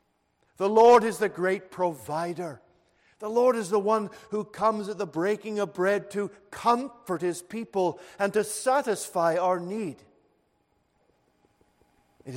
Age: 50-69